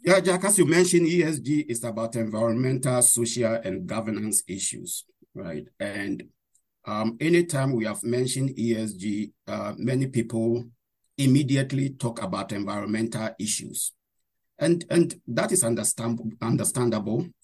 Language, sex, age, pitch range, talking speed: English, male, 50-69, 115-150 Hz, 115 wpm